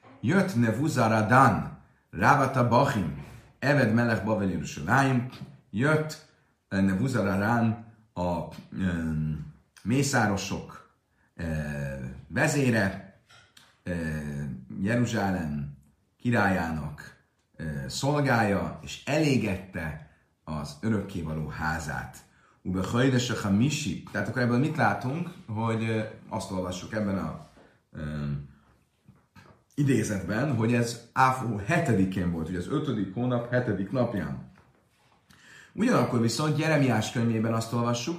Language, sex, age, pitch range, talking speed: Hungarian, male, 40-59, 95-120 Hz, 90 wpm